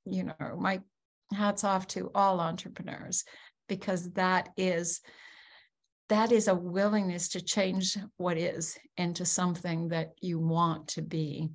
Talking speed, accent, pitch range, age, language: 135 wpm, American, 170-210 Hz, 50-69, English